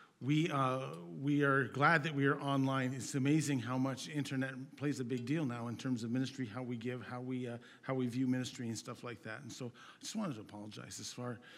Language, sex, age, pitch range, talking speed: English, male, 40-59, 125-160 Hz, 240 wpm